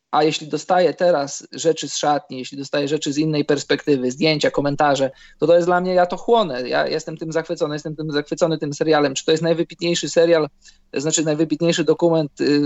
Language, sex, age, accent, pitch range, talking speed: Polish, male, 20-39, native, 155-175 Hz, 195 wpm